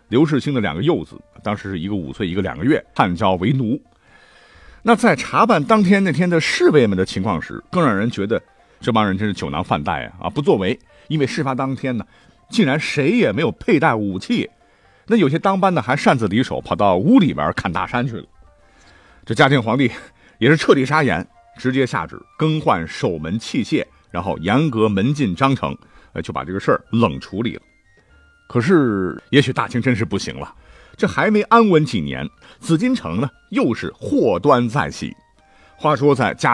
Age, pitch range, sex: 50-69, 105-160 Hz, male